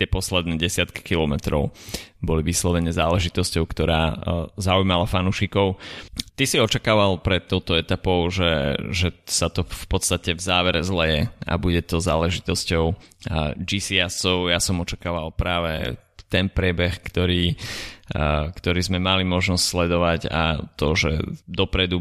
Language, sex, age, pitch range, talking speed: Slovak, male, 20-39, 85-95 Hz, 125 wpm